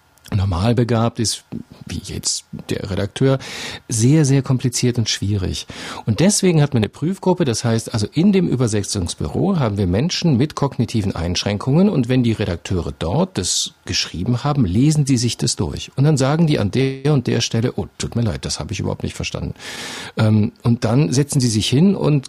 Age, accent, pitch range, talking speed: 50-69, German, 105-130 Hz, 185 wpm